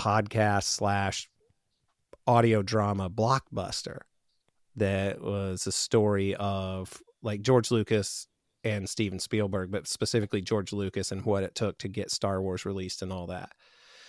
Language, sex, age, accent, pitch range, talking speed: English, male, 30-49, American, 100-125 Hz, 135 wpm